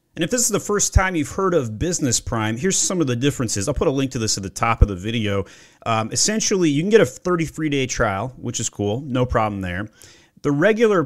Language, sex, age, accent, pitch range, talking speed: English, male, 30-49, American, 115-160 Hz, 245 wpm